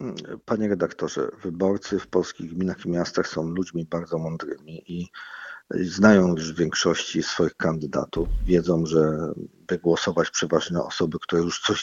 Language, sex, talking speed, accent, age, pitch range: Polish, male, 140 wpm, native, 50-69, 85-95 Hz